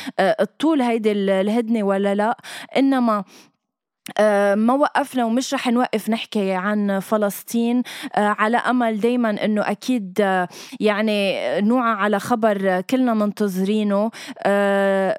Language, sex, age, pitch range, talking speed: Arabic, female, 20-39, 205-250 Hz, 100 wpm